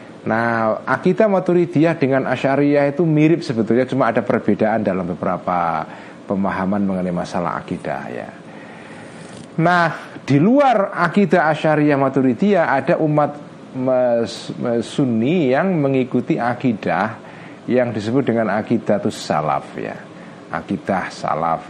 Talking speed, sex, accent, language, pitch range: 110 wpm, male, native, Indonesian, 110-175 Hz